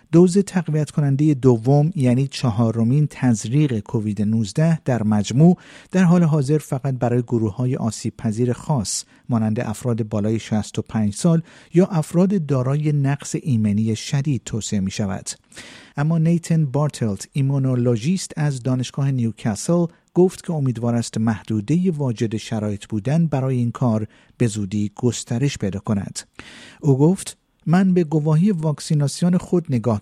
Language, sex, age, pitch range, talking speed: Persian, male, 50-69, 115-160 Hz, 130 wpm